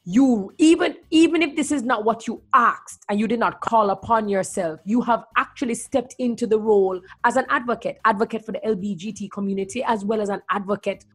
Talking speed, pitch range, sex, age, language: 200 wpm, 205-255 Hz, female, 30-49, English